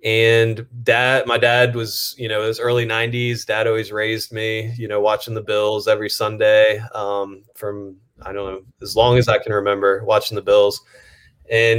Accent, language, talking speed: American, English, 185 wpm